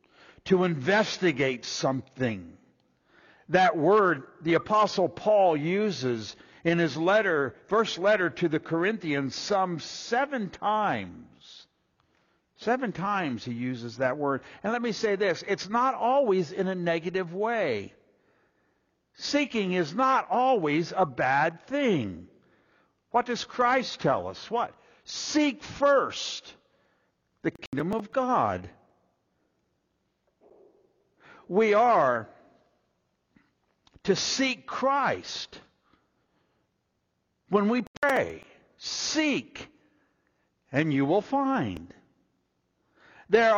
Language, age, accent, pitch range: English, 60-79, American, 170-260 Hz